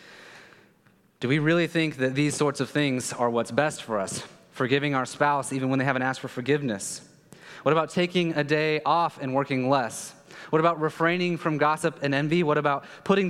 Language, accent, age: English, American, 30-49